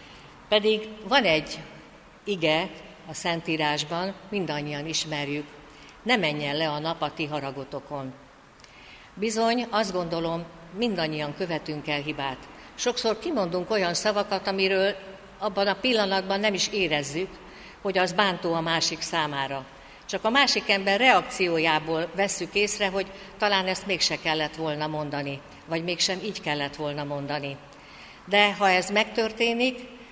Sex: female